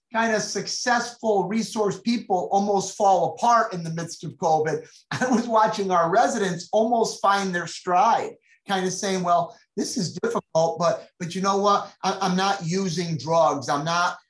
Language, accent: English, American